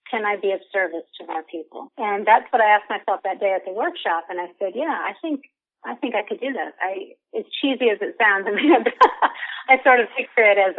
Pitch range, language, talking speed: 180-225 Hz, English, 250 wpm